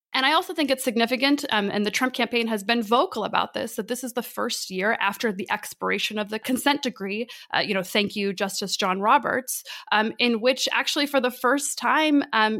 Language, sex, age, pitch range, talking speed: English, female, 20-39, 195-250 Hz, 215 wpm